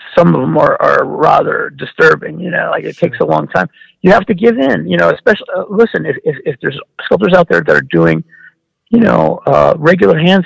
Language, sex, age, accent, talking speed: English, male, 50-69, American, 230 wpm